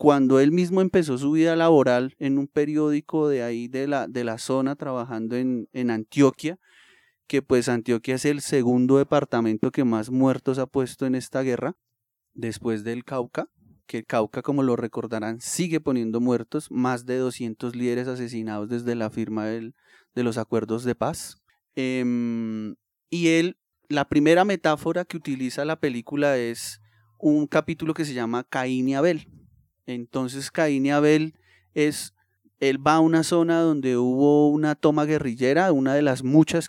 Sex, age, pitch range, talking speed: male, 20-39, 120-145 Hz, 160 wpm